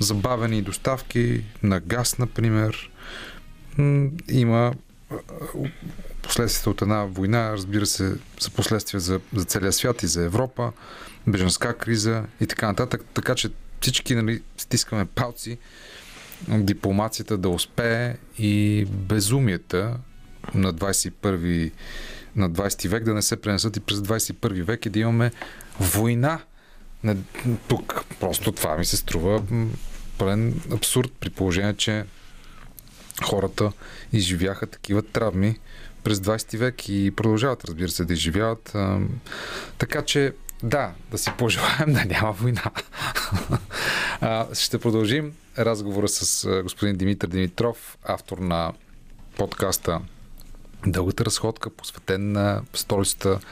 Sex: male